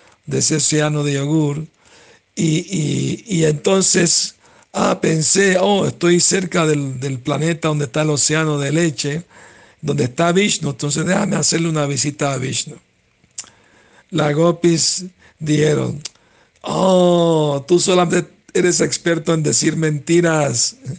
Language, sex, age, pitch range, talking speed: Spanish, male, 60-79, 150-175 Hz, 125 wpm